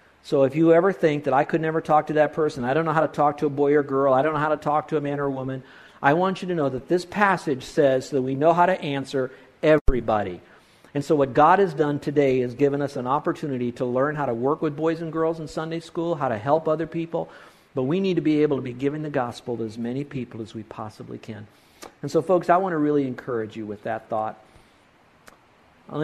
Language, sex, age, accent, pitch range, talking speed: English, male, 50-69, American, 135-180 Hz, 260 wpm